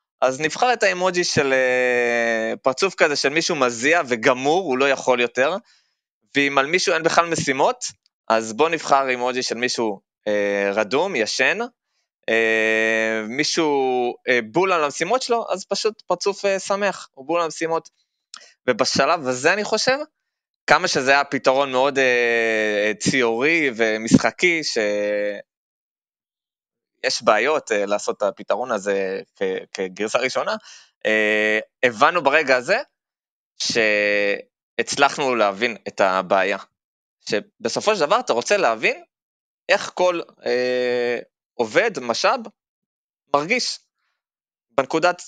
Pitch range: 110-165 Hz